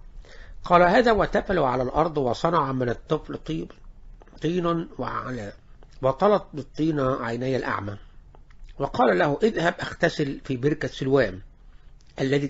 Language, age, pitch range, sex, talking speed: English, 60-79, 130-170 Hz, male, 105 wpm